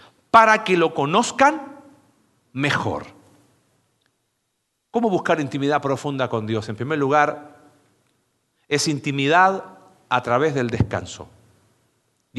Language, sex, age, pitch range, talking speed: Spanish, male, 40-59, 135-205 Hz, 100 wpm